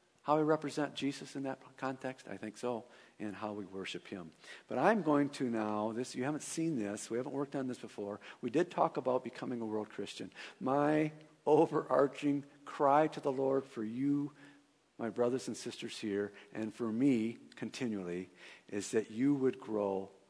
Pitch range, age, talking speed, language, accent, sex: 110-145 Hz, 50-69, 180 wpm, English, American, male